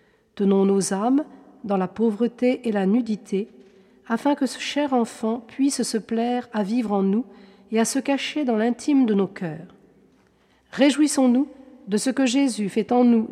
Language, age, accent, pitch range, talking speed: French, 40-59, French, 215-260 Hz, 170 wpm